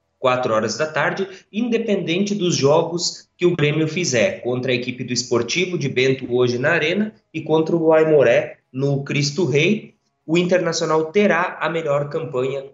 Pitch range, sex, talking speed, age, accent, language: 125-165 Hz, male, 160 wpm, 20-39, Brazilian, Portuguese